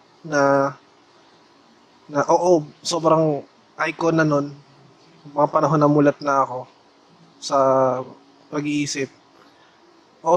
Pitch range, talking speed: 135-150 Hz, 100 wpm